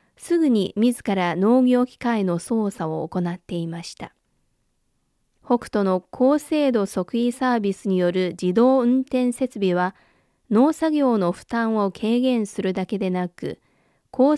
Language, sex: Japanese, female